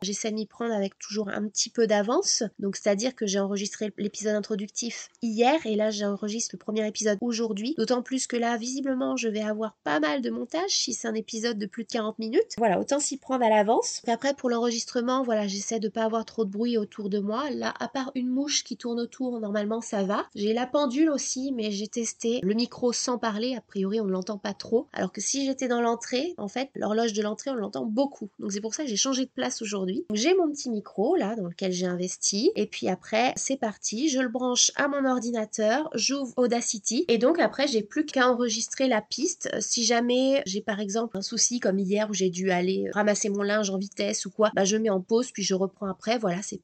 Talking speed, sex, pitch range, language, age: 235 wpm, female, 205-245 Hz, French, 20-39